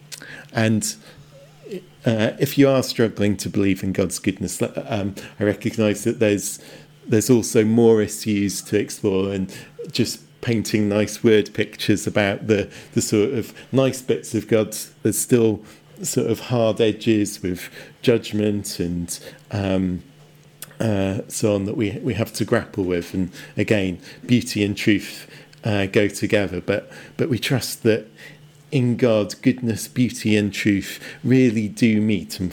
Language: English